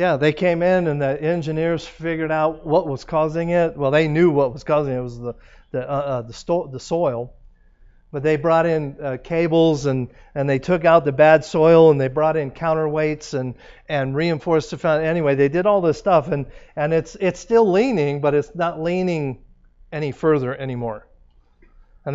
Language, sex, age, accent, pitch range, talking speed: English, male, 50-69, American, 130-165 Hz, 200 wpm